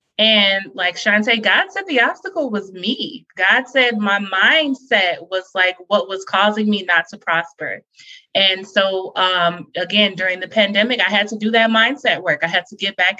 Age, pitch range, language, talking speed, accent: 20-39, 185-225 Hz, English, 185 wpm, American